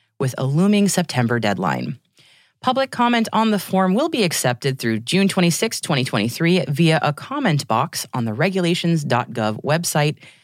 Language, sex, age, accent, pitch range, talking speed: English, female, 30-49, American, 125-185 Hz, 145 wpm